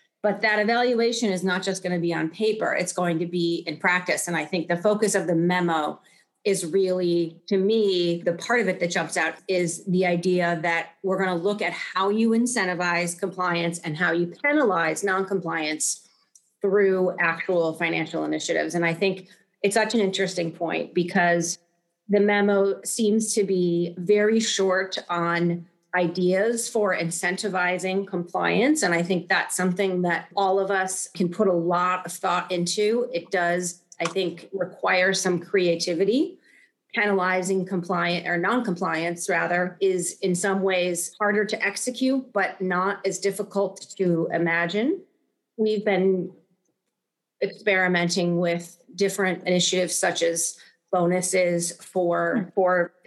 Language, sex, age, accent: English, female, 30-49, American